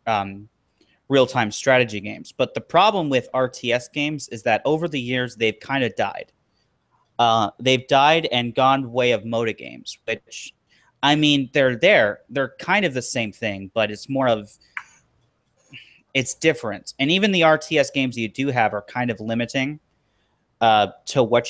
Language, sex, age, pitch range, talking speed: English, male, 30-49, 115-140 Hz, 165 wpm